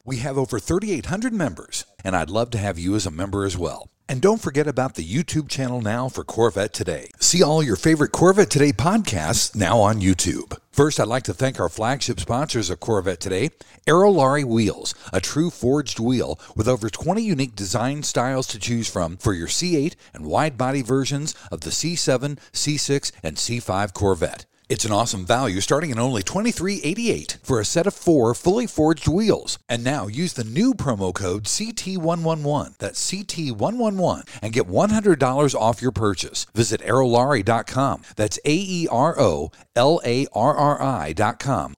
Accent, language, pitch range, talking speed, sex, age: American, English, 110-155 Hz, 165 wpm, male, 60-79